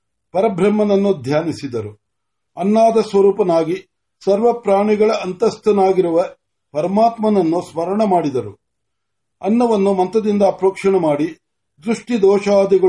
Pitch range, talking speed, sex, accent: 165-215 Hz, 65 wpm, male, native